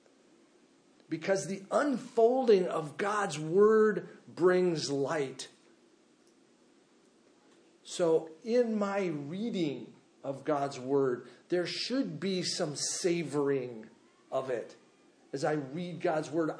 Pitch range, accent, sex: 140-200 Hz, American, male